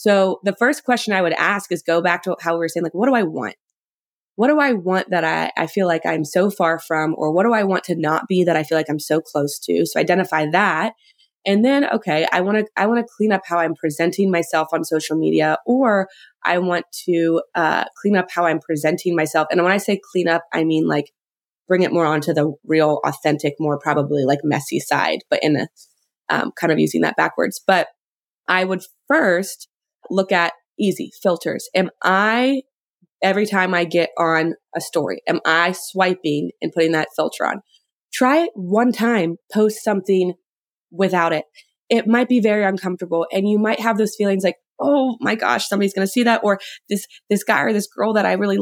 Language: English